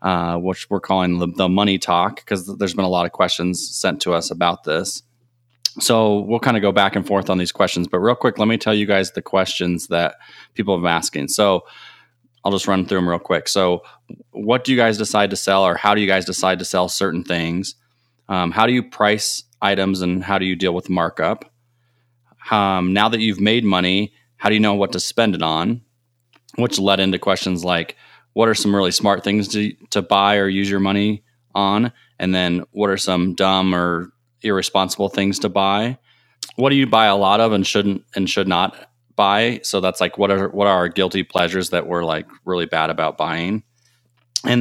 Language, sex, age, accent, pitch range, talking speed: English, male, 20-39, American, 90-110 Hz, 215 wpm